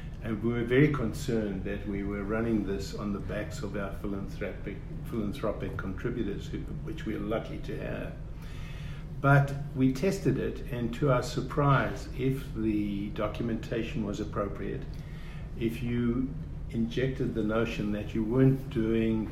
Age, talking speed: 50-69, 145 wpm